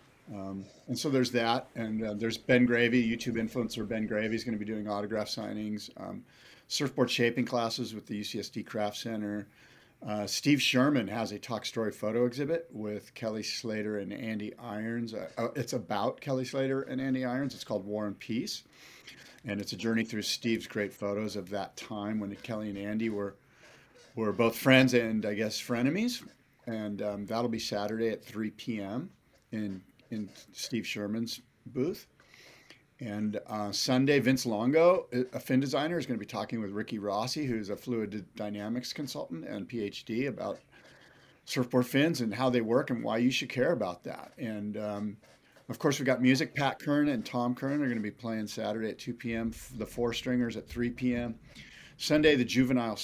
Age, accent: 50-69, American